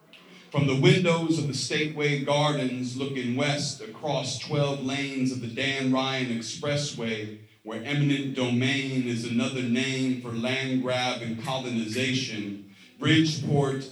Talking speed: 125 wpm